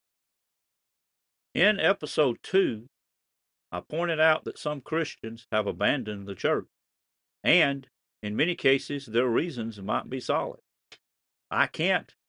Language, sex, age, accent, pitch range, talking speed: English, male, 50-69, American, 100-140 Hz, 115 wpm